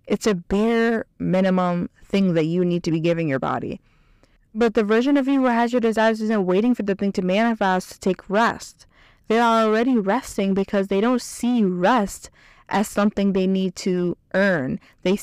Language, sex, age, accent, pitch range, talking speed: English, female, 20-39, American, 190-225 Hz, 190 wpm